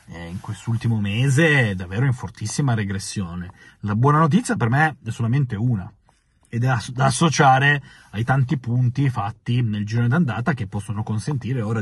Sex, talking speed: male, 150 wpm